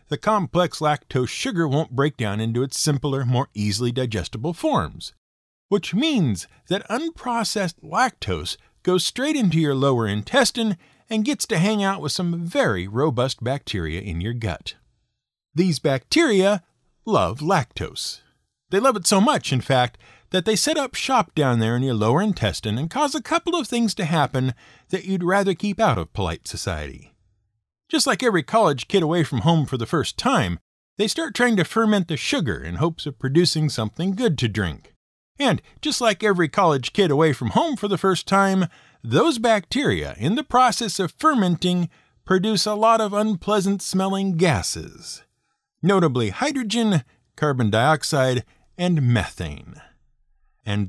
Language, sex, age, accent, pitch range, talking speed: English, male, 50-69, American, 125-205 Hz, 160 wpm